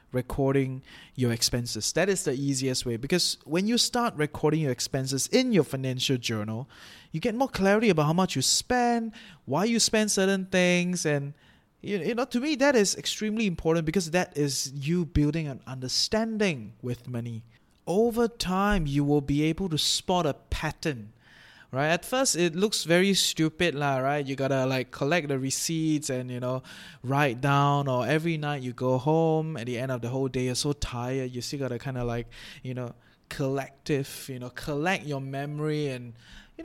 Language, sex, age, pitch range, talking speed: English, male, 20-39, 130-175 Hz, 185 wpm